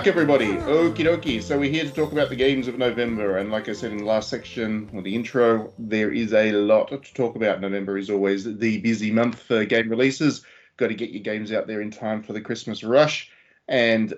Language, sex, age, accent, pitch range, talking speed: English, male, 20-39, Australian, 100-125 Hz, 230 wpm